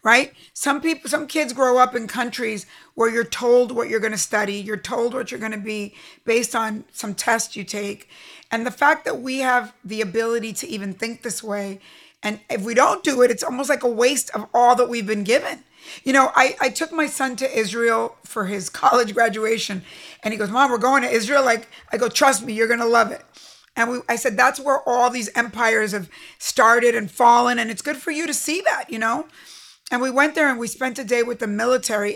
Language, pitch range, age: English, 215-260 Hz, 50-69